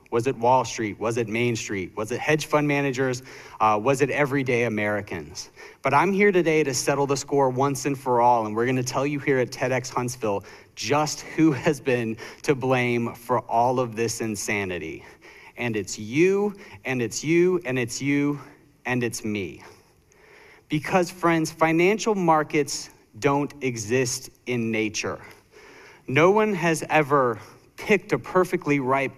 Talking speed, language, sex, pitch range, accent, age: 160 wpm, English, male, 120-155 Hz, American, 30-49